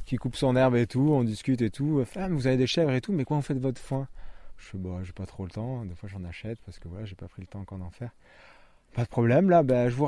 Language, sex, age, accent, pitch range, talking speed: French, male, 20-39, French, 95-120 Hz, 325 wpm